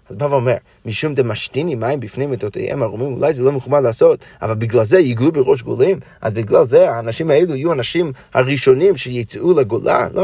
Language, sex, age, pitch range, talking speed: Hebrew, male, 30-49, 130-170 Hz, 190 wpm